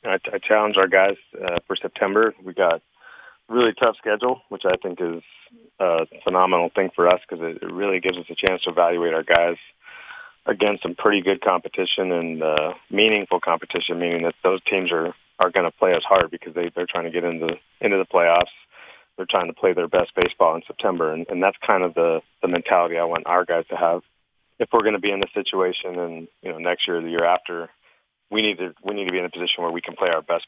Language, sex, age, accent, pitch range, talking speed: English, male, 30-49, American, 85-100 Hz, 240 wpm